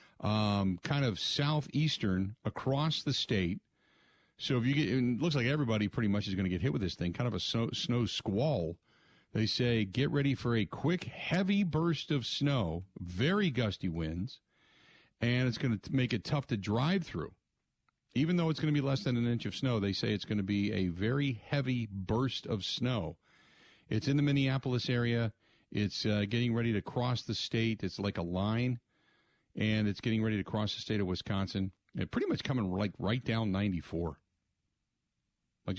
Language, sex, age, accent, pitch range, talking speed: English, male, 50-69, American, 95-125 Hz, 195 wpm